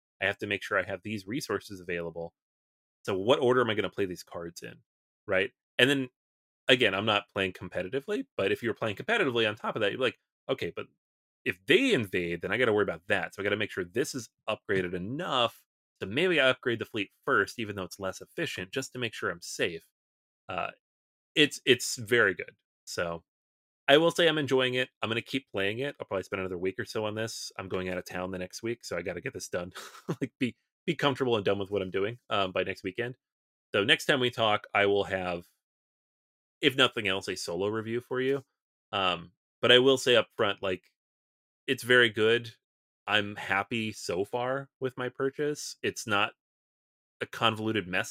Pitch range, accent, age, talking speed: 90-125 Hz, American, 30-49, 215 wpm